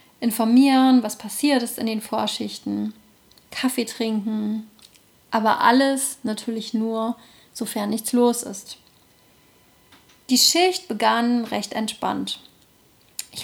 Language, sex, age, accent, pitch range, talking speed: German, female, 30-49, German, 210-250 Hz, 105 wpm